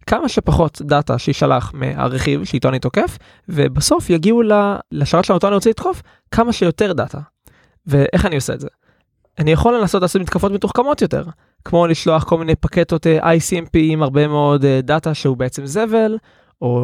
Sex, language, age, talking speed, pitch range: male, Hebrew, 20-39, 145 wpm, 145-190 Hz